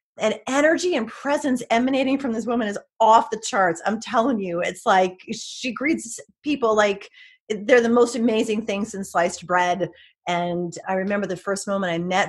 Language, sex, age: English, female, 30-49